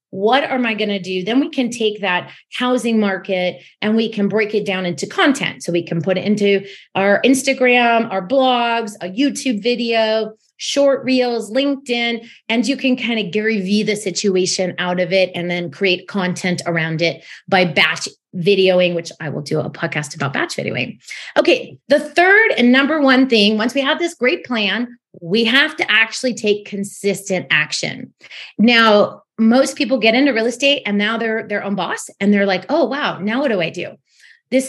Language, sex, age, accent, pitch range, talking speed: English, female, 30-49, American, 190-255 Hz, 190 wpm